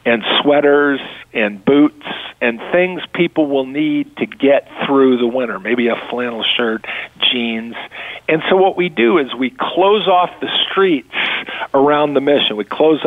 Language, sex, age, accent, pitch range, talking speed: English, male, 50-69, American, 130-155 Hz, 160 wpm